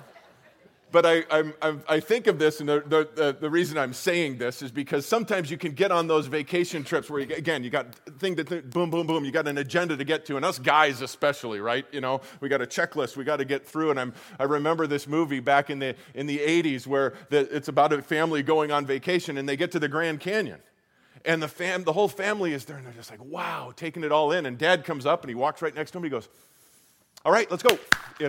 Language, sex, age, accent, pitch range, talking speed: English, male, 40-59, American, 145-180 Hz, 260 wpm